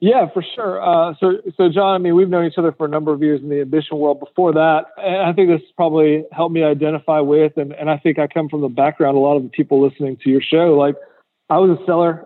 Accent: American